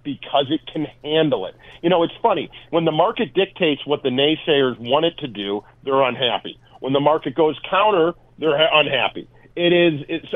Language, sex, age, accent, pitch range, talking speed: English, male, 40-59, American, 120-155 Hz, 190 wpm